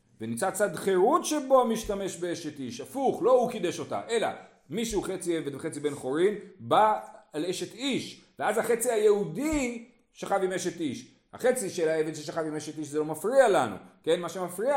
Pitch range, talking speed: 140-210 Hz, 180 wpm